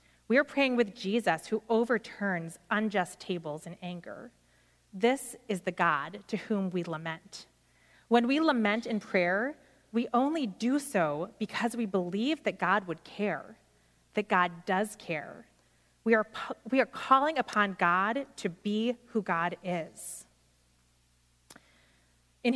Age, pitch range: 30-49, 170-225 Hz